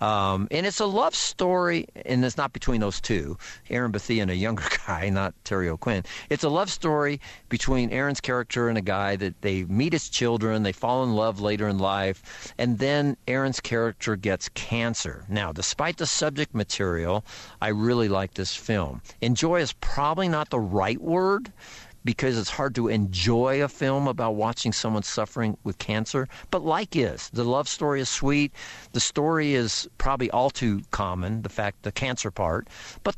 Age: 50-69